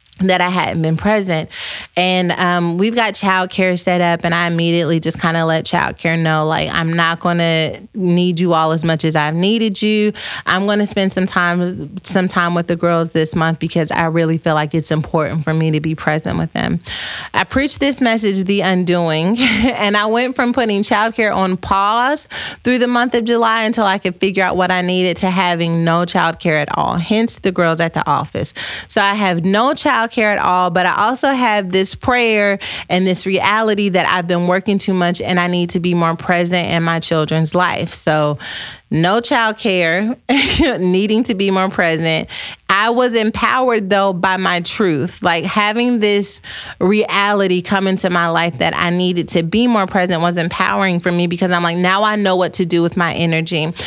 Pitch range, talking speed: 170-210 Hz, 205 wpm